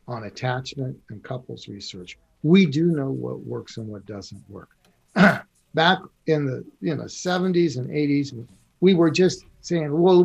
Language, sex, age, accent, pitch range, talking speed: English, male, 60-79, American, 140-175 Hz, 145 wpm